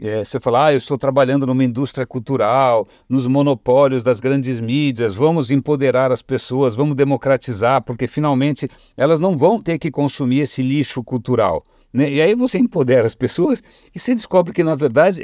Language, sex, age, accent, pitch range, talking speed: English, male, 60-79, Brazilian, 125-170 Hz, 170 wpm